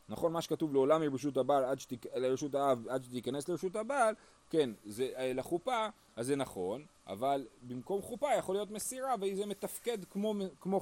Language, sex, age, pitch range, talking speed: Hebrew, male, 30-49, 115-155 Hz, 155 wpm